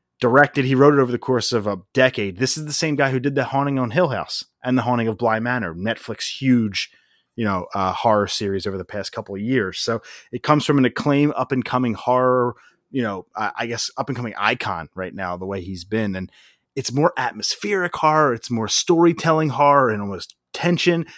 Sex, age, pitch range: male, 30-49, 110-140 Hz